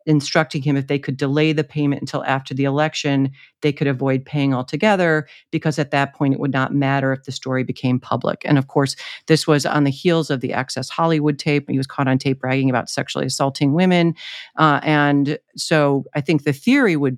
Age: 40-59